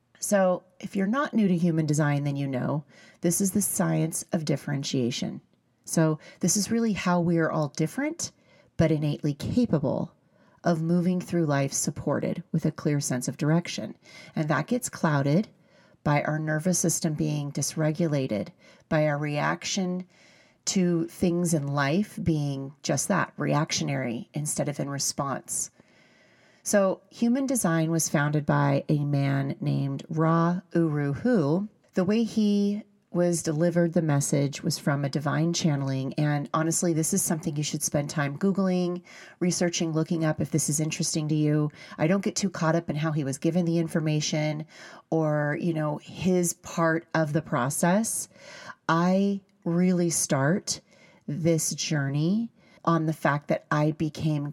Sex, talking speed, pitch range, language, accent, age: female, 155 wpm, 150-180 Hz, English, American, 30-49